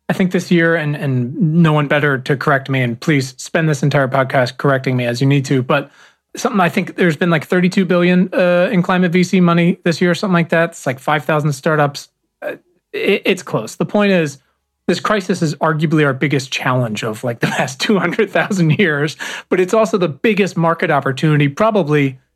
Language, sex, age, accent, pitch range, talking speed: English, male, 30-49, American, 135-175 Hz, 215 wpm